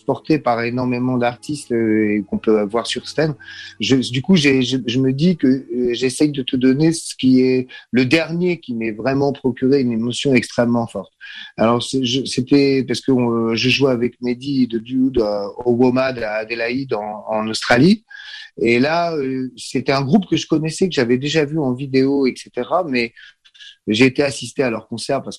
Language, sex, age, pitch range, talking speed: Arabic, male, 30-49, 120-150 Hz, 195 wpm